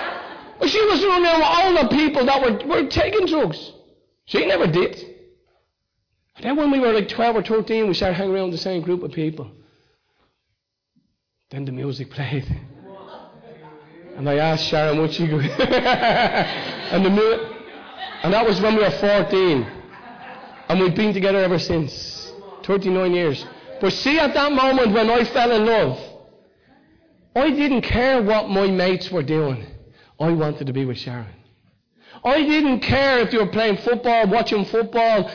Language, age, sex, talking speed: English, 30-49, male, 155 wpm